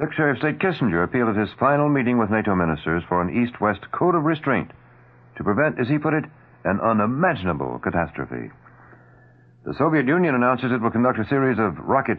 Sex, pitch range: male, 85-125 Hz